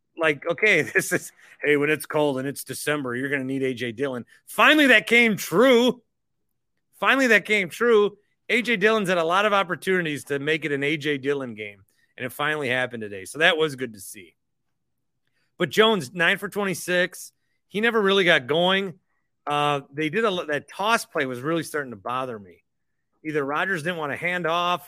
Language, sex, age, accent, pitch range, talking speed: English, male, 30-49, American, 125-175 Hz, 190 wpm